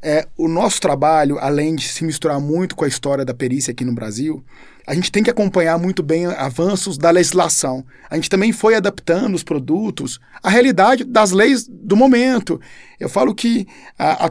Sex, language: male, Portuguese